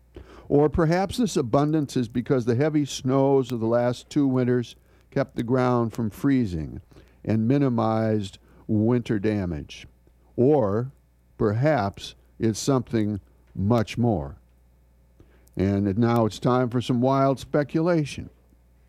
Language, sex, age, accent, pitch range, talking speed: English, male, 60-79, American, 100-150 Hz, 120 wpm